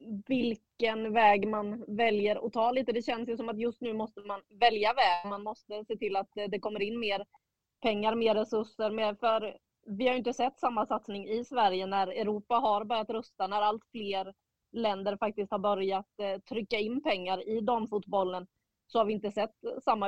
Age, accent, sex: 20-39, Swedish, female